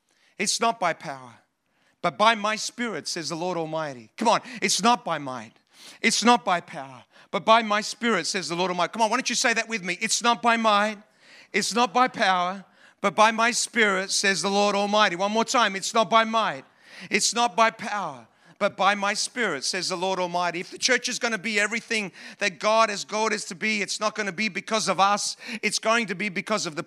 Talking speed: 230 wpm